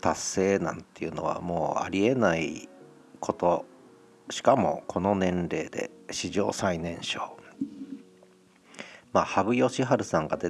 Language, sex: Japanese, male